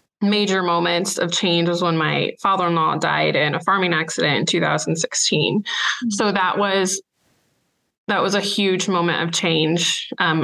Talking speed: 150 wpm